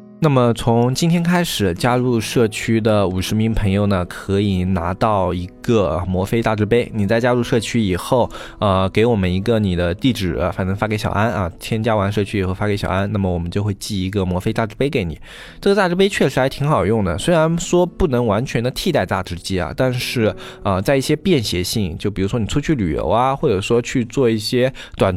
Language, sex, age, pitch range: Chinese, male, 20-39, 95-120 Hz